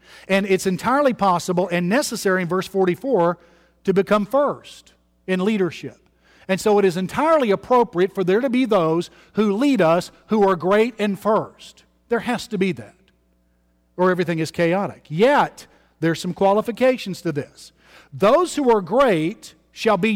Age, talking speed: 50-69, 160 wpm